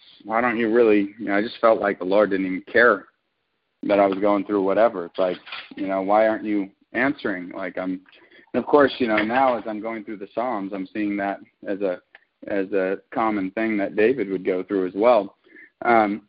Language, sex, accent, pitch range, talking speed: English, male, American, 100-110 Hz, 215 wpm